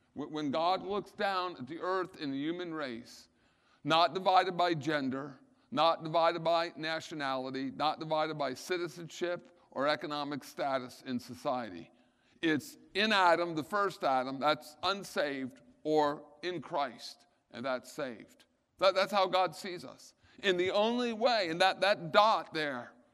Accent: American